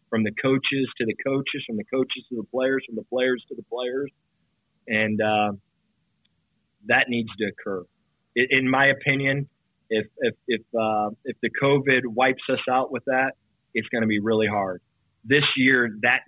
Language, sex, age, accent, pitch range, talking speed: English, male, 30-49, American, 110-130 Hz, 175 wpm